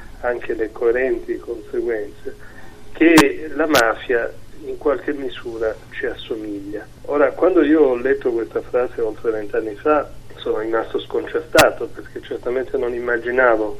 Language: Italian